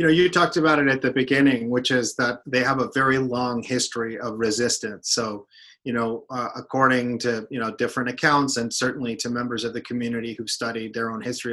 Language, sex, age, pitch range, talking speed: English, male, 30-49, 115-135 Hz, 215 wpm